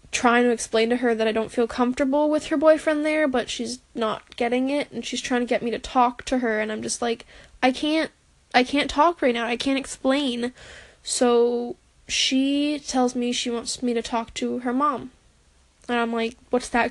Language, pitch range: English, 235-270 Hz